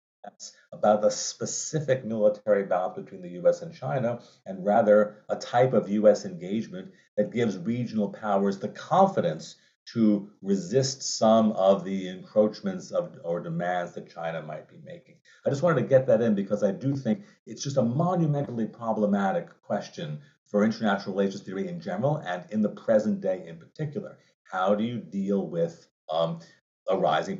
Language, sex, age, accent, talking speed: English, male, 50-69, American, 165 wpm